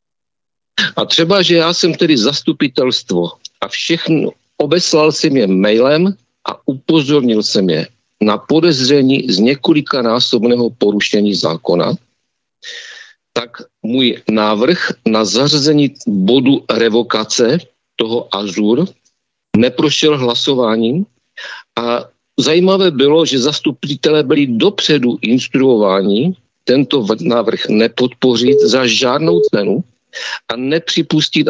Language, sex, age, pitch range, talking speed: Czech, male, 50-69, 115-155 Hz, 95 wpm